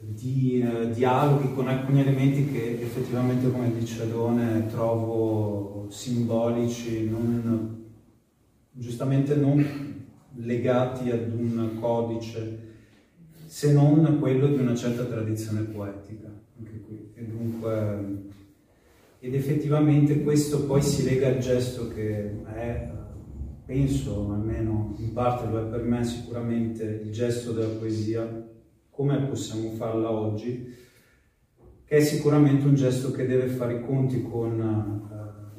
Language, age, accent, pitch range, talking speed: Italian, 30-49, native, 110-125 Hz, 125 wpm